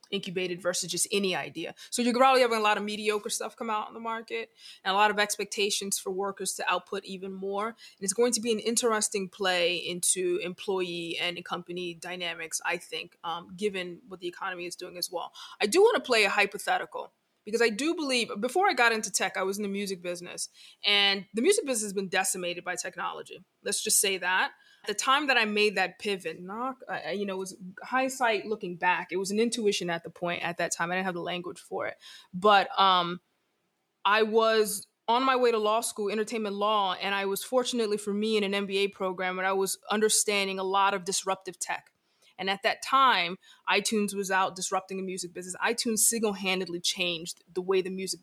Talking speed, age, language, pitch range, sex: 210 wpm, 20-39, English, 185-215 Hz, female